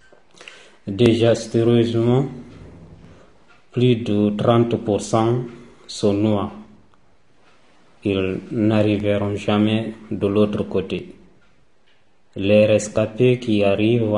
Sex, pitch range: male, 100-115 Hz